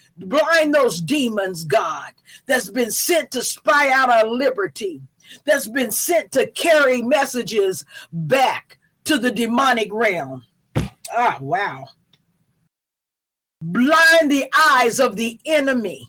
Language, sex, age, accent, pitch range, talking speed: English, female, 50-69, American, 220-300 Hz, 120 wpm